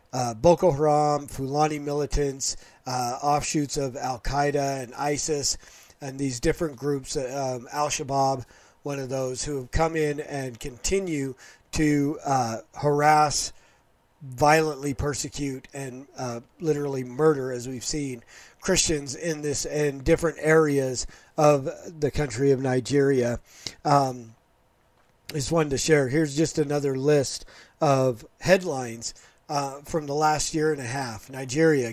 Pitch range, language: 135-155 Hz, English